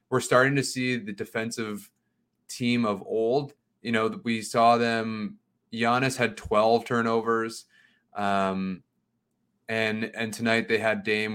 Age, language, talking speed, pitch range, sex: 20-39, English, 130 wpm, 110-125 Hz, male